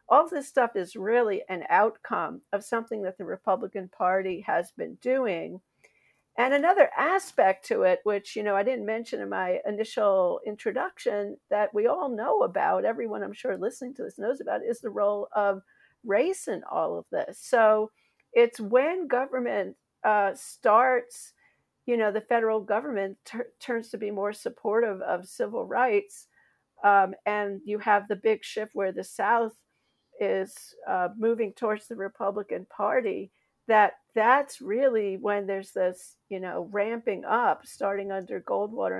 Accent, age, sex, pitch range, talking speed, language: American, 50-69, female, 200-255 Hz, 155 wpm, English